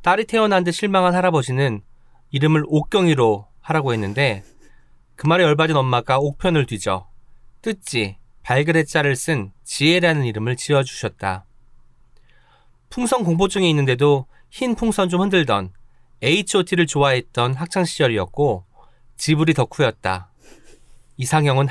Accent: native